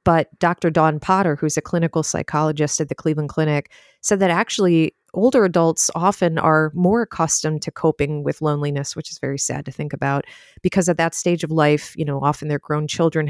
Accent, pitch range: American, 145-170 Hz